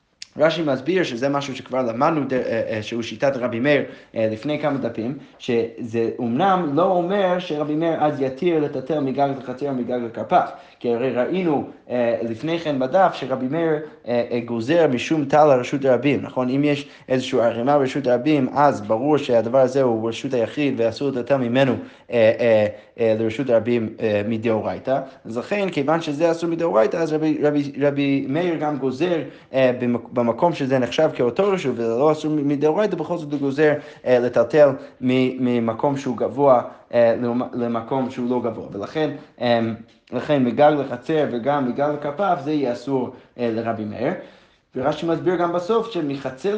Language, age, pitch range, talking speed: Hebrew, 20-39, 120-150 Hz, 140 wpm